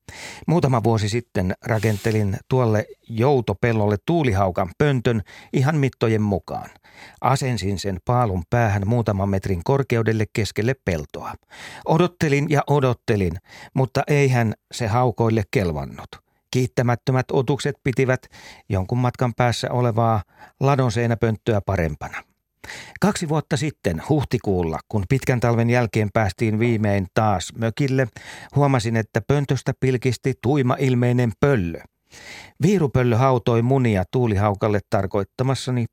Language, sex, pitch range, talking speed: Finnish, male, 105-130 Hz, 100 wpm